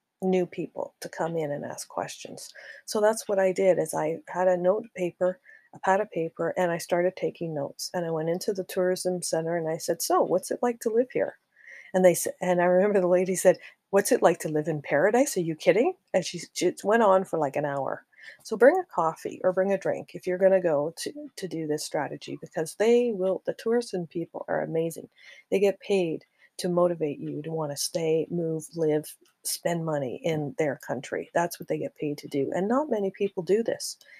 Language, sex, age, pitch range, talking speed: English, female, 40-59, 165-195 Hz, 225 wpm